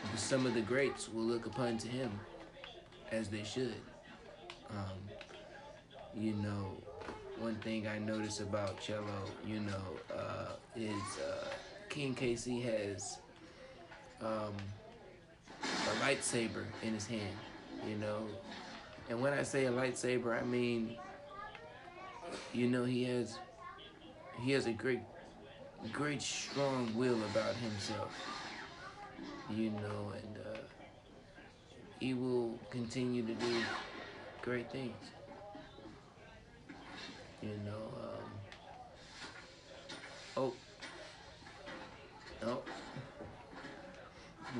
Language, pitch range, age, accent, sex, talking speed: English, 105-125 Hz, 20-39, American, male, 100 wpm